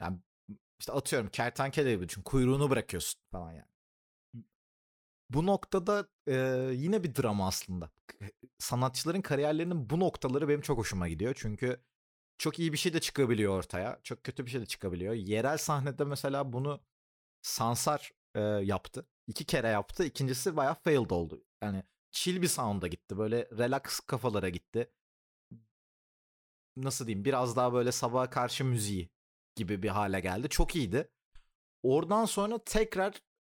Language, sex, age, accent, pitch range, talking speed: Turkish, male, 40-59, native, 105-150 Hz, 140 wpm